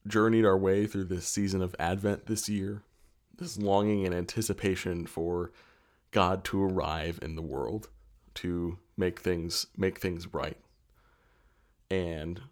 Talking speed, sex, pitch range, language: 135 wpm, male, 85-100 Hz, English